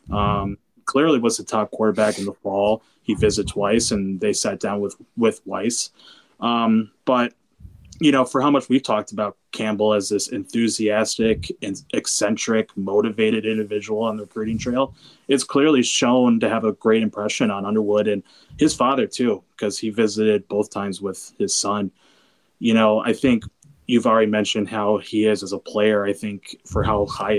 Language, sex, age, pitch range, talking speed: English, male, 20-39, 100-110 Hz, 175 wpm